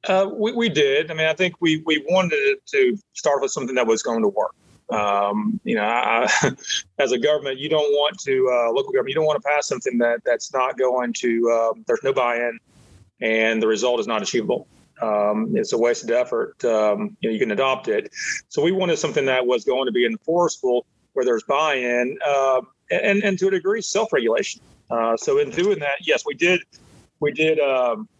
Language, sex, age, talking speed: English, male, 40-59, 215 wpm